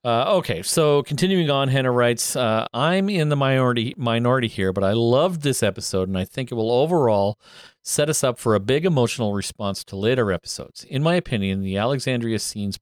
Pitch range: 100-135 Hz